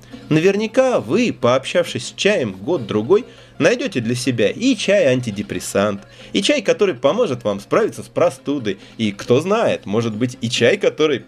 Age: 20-39